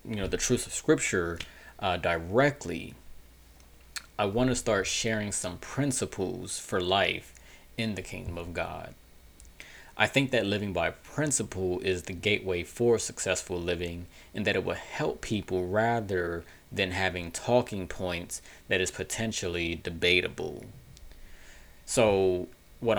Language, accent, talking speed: English, American, 135 wpm